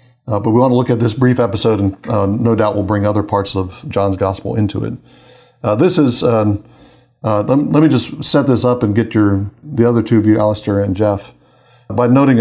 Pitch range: 105-125 Hz